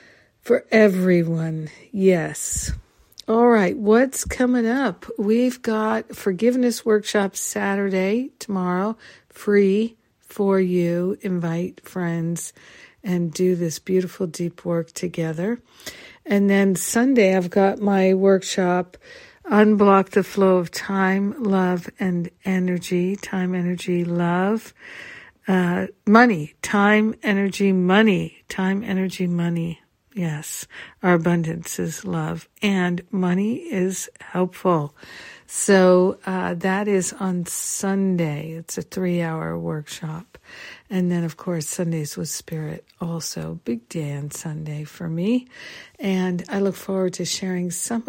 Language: English